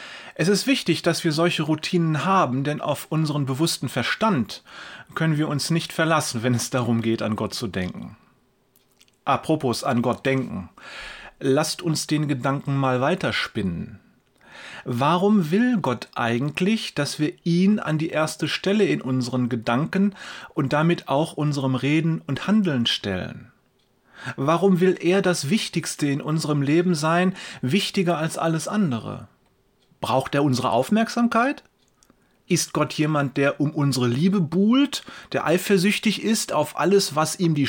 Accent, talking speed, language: German, 145 wpm, German